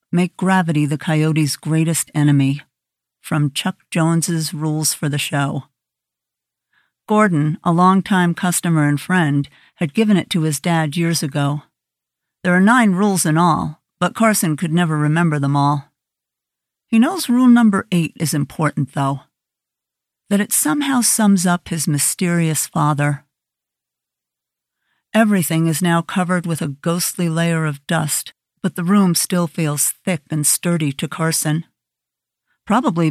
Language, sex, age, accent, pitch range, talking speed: English, female, 50-69, American, 150-180 Hz, 140 wpm